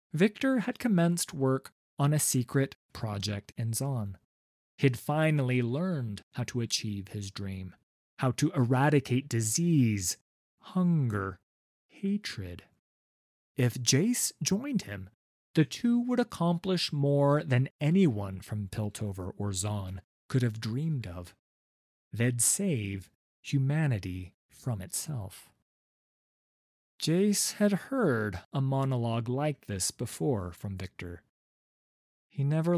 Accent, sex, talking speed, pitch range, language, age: American, male, 110 wpm, 105-155 Hz, English, 30-49